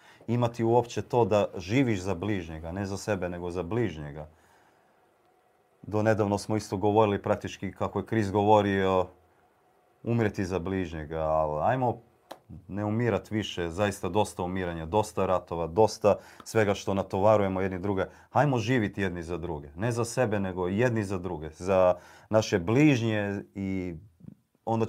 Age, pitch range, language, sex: 40-59, 90-115 Hz, Croatian, male